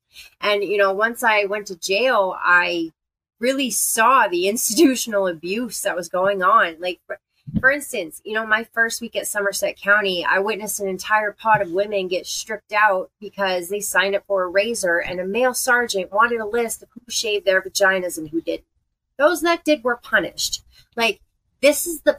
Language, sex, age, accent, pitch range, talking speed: English, female, 30-49, American, 190-235 Hz, 190 wpm